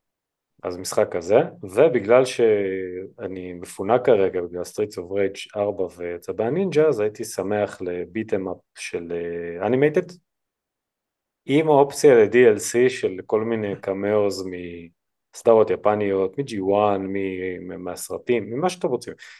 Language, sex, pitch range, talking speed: Hebrew, male, 95-115 Hz, 115 wpm